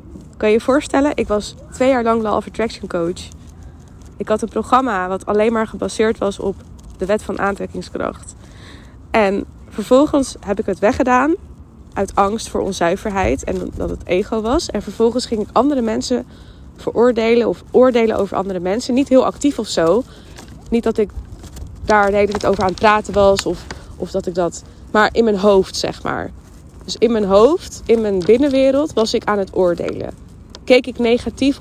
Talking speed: 185 wpm